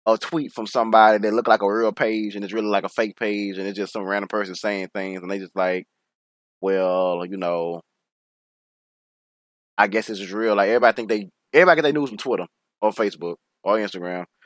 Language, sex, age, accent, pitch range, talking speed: English, male, 20-39, American, 95-135 Hz, 210 wpm